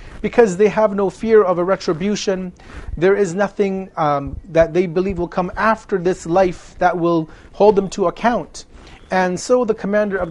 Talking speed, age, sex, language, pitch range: 180 wpm, 40-59, male, English, 170-210 Hz